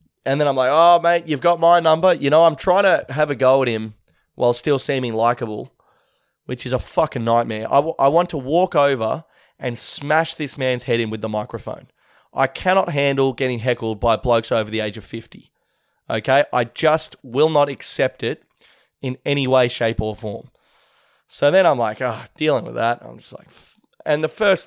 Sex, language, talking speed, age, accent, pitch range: male, English, 205 wpm, 20-39, Australian, 115-145 Hz